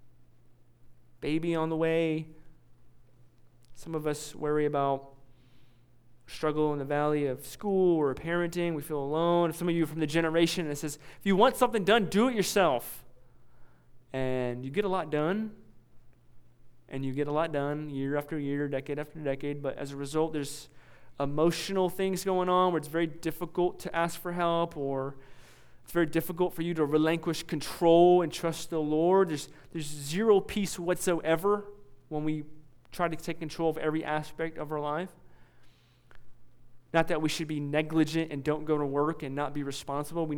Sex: male